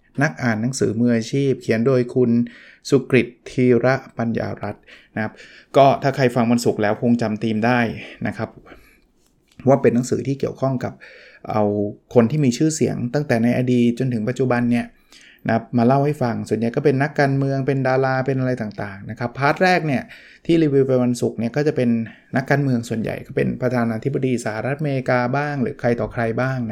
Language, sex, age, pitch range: Thai, male, 20-39, 115-140 Hz